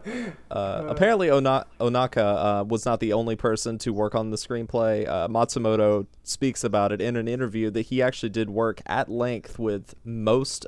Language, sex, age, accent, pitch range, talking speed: English, male, 20-39, American, 100-120 Hz, 175 wpm